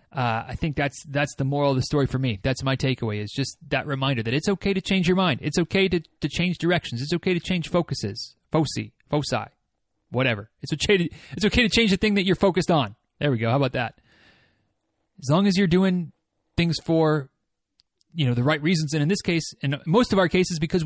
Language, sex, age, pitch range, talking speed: English, male, 30-49, 135-185 Hz, 235 wpm